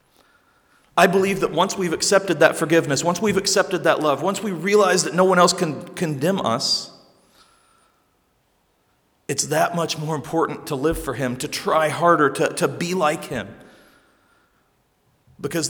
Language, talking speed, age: English, 155 wpm, 40-59